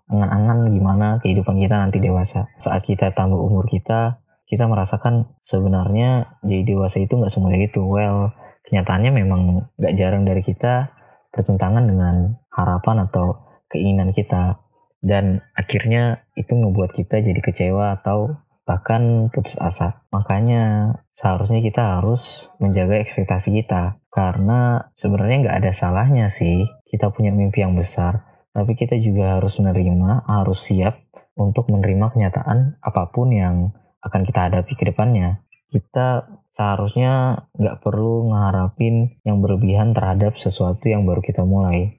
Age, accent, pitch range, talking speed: 20-39, native, 95-115 Hz, 130 wpm